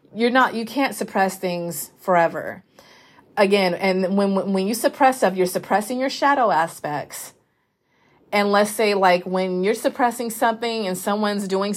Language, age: English, 30-49